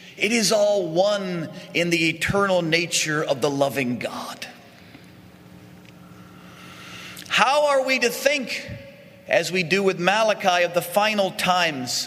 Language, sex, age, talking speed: English, male, 40-59, 130 wpm